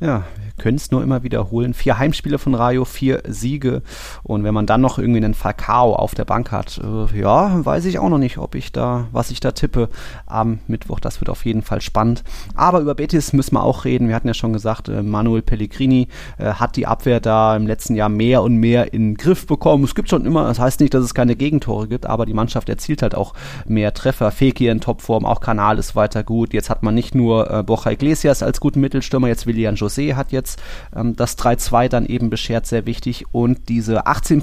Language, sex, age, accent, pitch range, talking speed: German, male, 30-49, German, 110-135 Hz, 230 wpm